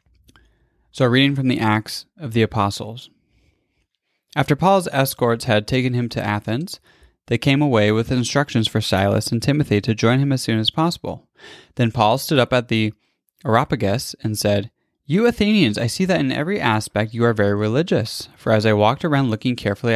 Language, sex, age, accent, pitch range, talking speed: English, male, 20-39, American, 110-145 Hz, 180 wpm